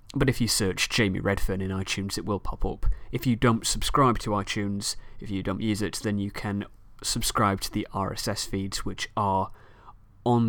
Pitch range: 100-115 Hz